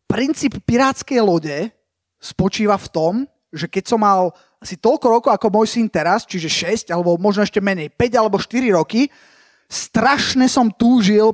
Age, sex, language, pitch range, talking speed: 30-49, male, Slovak, 200-245 Hz, 160 wpm